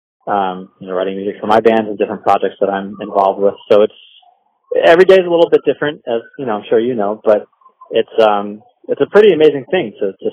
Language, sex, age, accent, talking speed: English, male, 20-39, American, 240 wpm